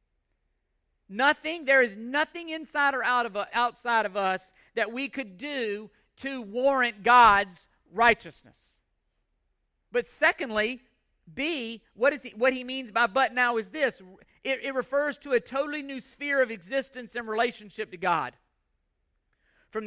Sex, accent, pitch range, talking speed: male, American, 200-265 Hz, 145 wpm